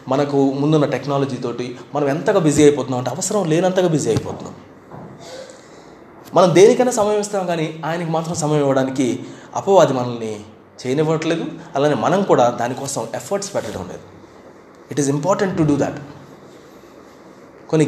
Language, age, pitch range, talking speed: Telugu, 20-39, 135-175 Hz, 130 wpm